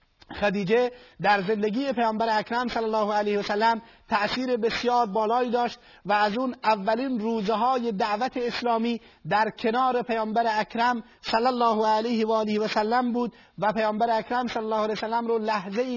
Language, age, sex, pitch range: Persian, 30-49, male, 205-230 Hz